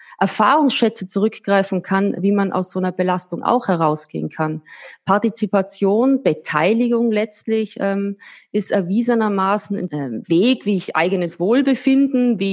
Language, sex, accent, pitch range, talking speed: German, female, German, 190-235 Hz, 120 wpm